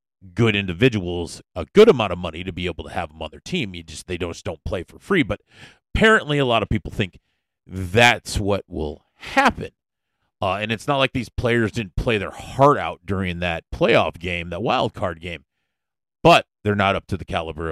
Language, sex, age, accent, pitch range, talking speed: English, male, 40-59, American, 95-140 Hz, 210 wpm